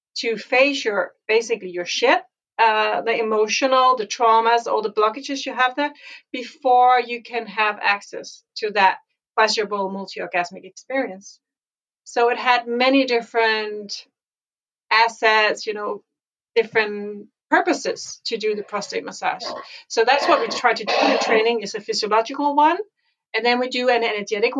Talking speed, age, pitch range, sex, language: 150 wpm, 40-59, 215-265 Hz, female, English